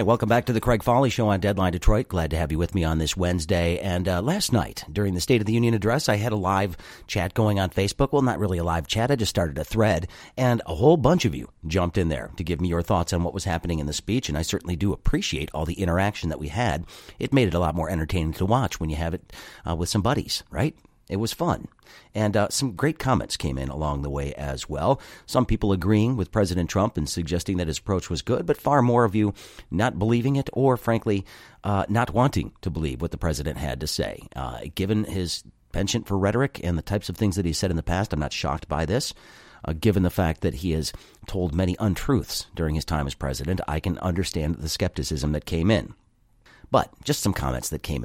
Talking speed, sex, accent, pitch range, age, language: 250 wpm, male, American, 80-110 Hz, 40-59, English